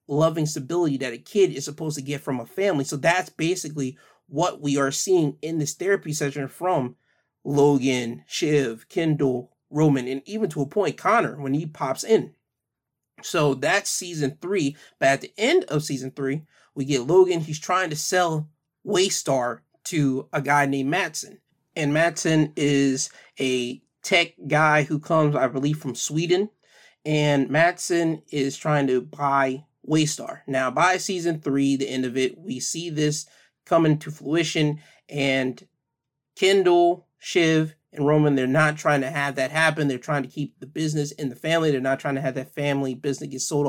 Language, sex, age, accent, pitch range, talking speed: English, male, 30-49, American, 140-165 Hz, 175 wpm